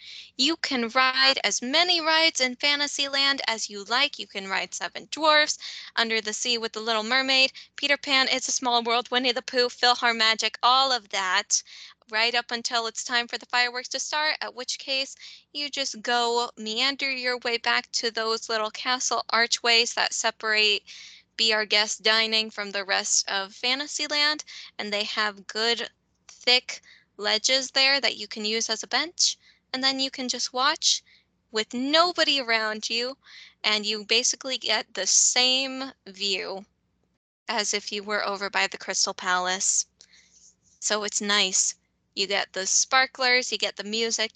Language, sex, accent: English, female, American